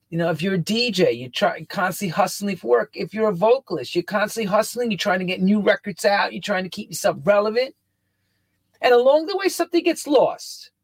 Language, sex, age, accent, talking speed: English, male, 40-59, American, 220 wpm